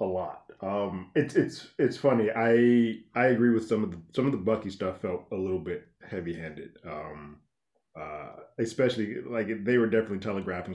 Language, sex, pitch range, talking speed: English, male, 95-145 Hz, 180 wpm